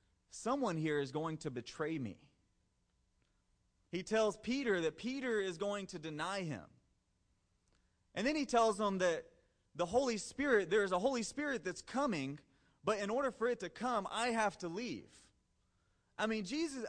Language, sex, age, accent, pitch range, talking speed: English, male, 30-49, American, 150-215 Hz, 165 wpm